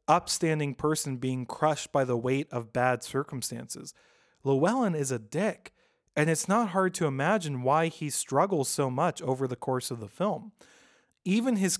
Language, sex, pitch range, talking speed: English, male, 125-165 Hz, 170 wpm